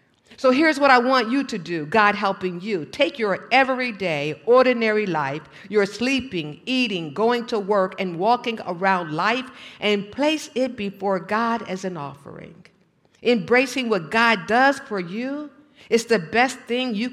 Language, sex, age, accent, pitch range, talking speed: English, female, 50-69, American, 190-250 Hz, 160 wpm